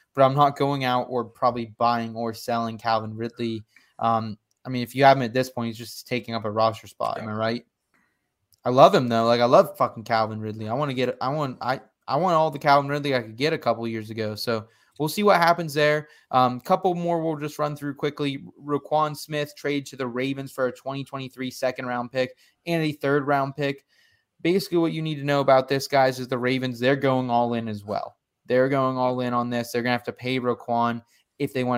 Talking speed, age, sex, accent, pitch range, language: 245 wpm, 20-39, male, American, 120-145 Hz, English